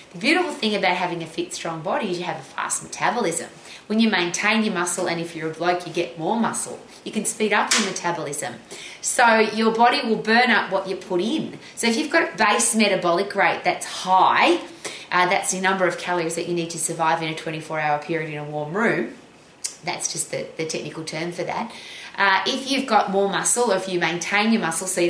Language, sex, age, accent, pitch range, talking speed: English, female, 30-49, Australian, 170-220 Hz, 230 wpm